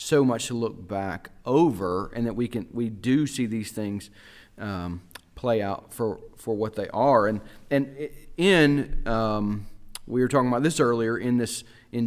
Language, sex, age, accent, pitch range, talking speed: English, male, 40-59, American, 105-135 Hz, 180 wpm